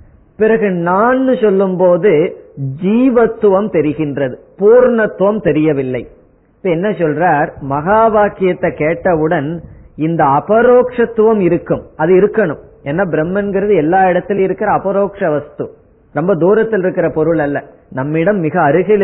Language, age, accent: Tamil, 30-49, native